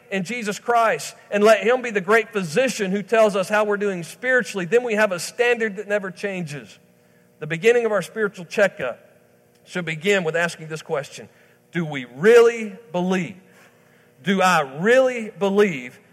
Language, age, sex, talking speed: English, 50-69, male, 165 wpm